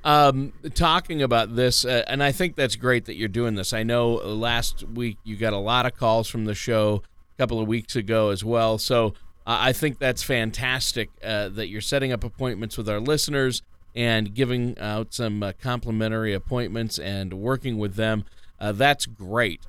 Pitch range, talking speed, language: 110-140 Hz, 190 wpm, English